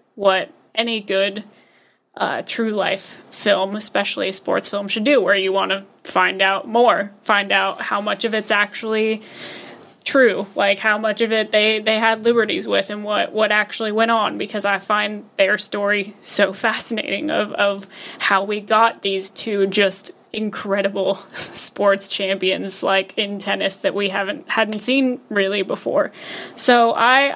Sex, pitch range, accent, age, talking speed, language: female, 200-235 Hz, American, 10-29, 160 wpm, English